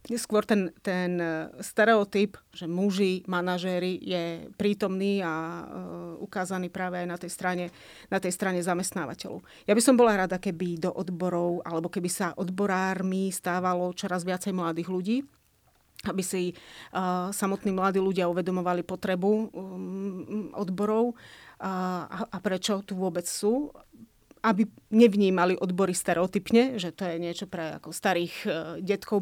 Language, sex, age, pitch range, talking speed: Slovak, female, 30-49, 180-200 Hz, 135 wpm